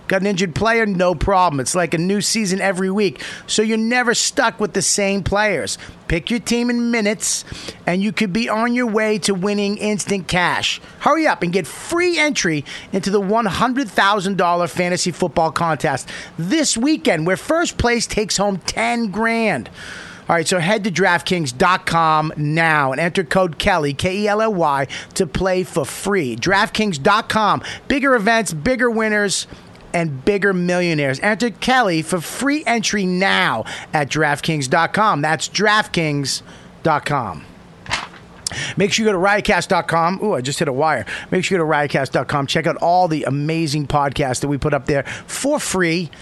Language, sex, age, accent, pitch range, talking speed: English, male, 30-49, American, 155-205 Hz, 160 wpm